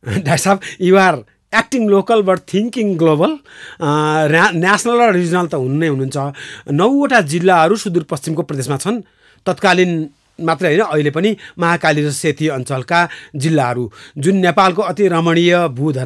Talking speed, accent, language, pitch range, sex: 120 wpm, Indian, English, 150-200 Hz, male